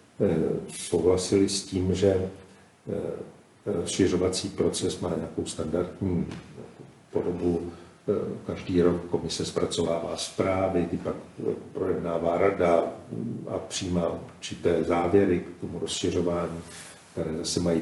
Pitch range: 85-100 Hz